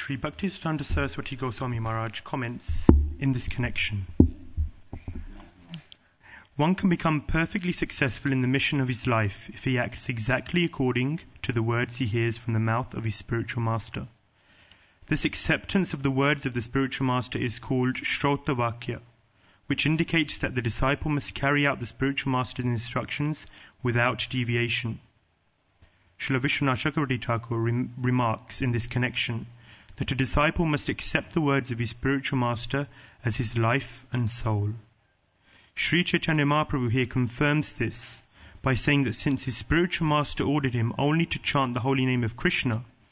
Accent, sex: British, male